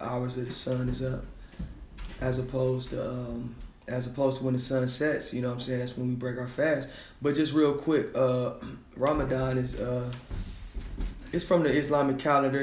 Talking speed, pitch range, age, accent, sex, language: 195 wpm, 125-135 Hz, 20-39, American, male, English